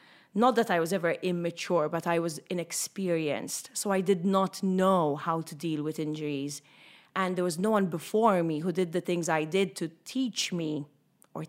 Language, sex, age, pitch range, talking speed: English, female, 30-49, 160-205 Hz, 195 wpm